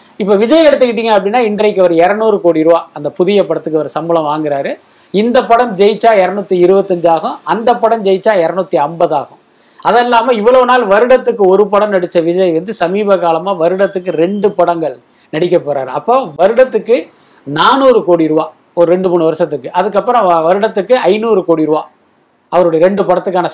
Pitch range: 170-225 Hz